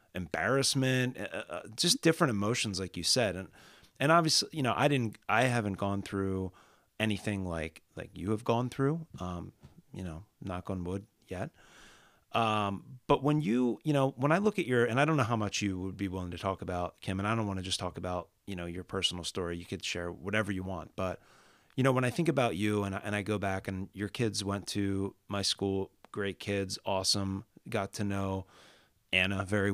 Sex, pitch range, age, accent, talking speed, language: male, 95-120 Hz, 30-49, American, 215 wpm, English